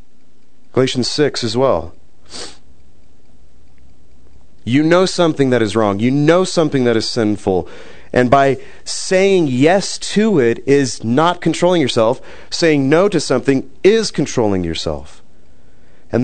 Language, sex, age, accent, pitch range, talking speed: English, male, 30-49, American, 115-185 Hz, 125 wpm